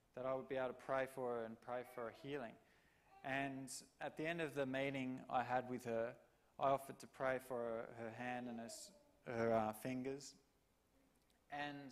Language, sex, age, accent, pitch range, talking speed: English, male, 20-39, Australian, 130-155 Hz, 195 wpm